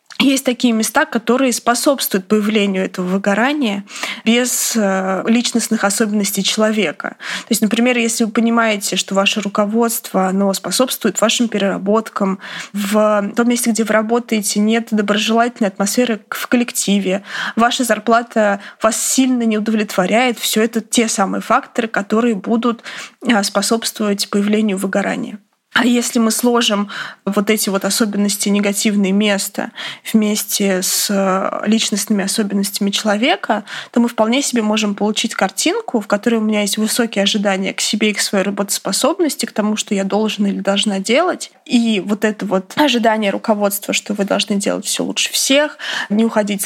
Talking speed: 140 wpm